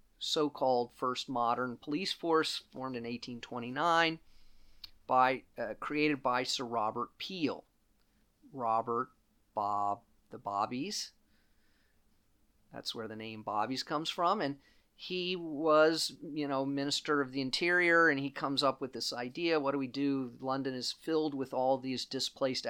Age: 40-59